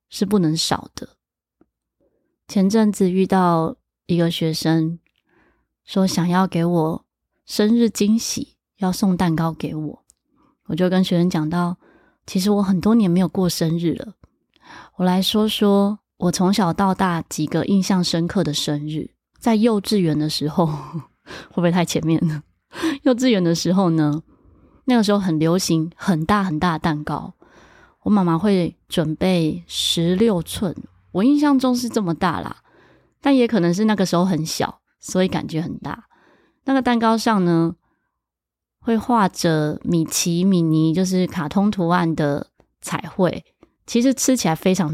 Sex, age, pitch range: female, 20-39, 160-205 Hz